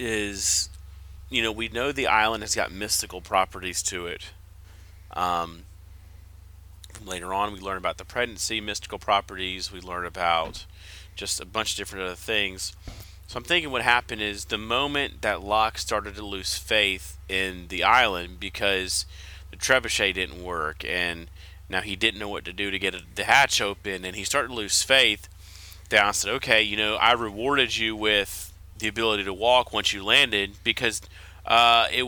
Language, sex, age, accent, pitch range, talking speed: English, male, 30-49, American, 85-110 Hz, 175 wpm